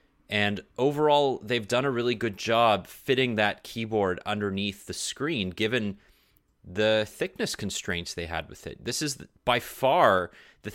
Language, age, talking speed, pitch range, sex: English, 30-49, 150 wpm, 95-115 Hz, male